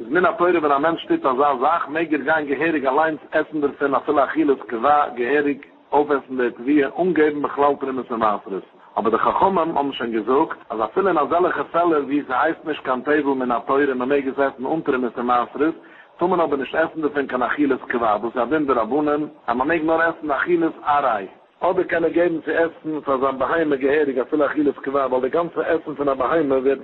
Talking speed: 100 wpm